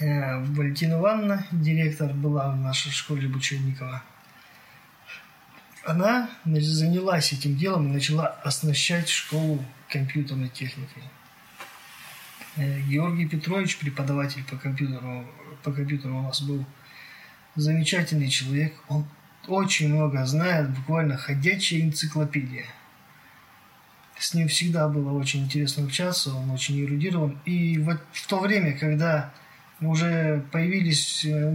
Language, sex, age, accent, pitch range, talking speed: Russian, male, 20-39, native, 140-165 Hz, 105 wpm